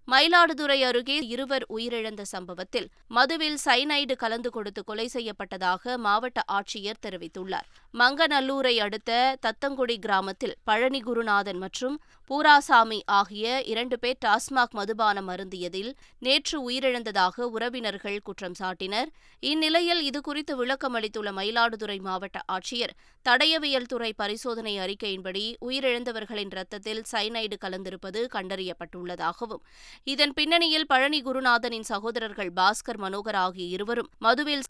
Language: Tamil